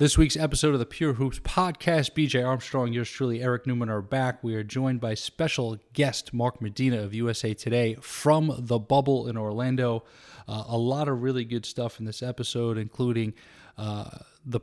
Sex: male